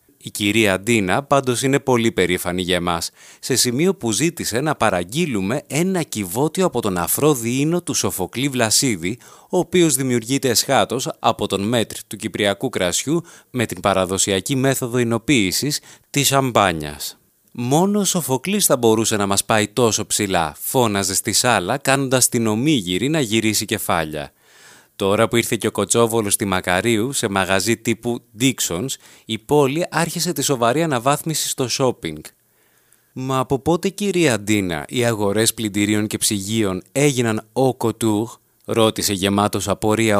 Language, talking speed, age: Greek, 145 wpm, 30-49